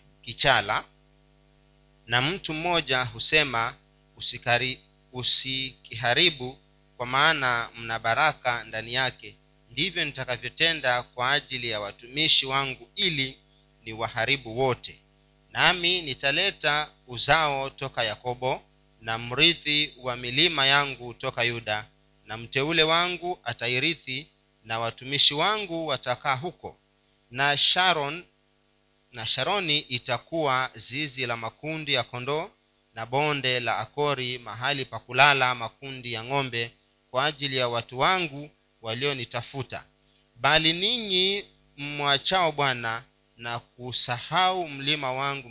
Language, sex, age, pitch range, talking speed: Swahili, male, 40-59, 115-150 Hz, 105 wpm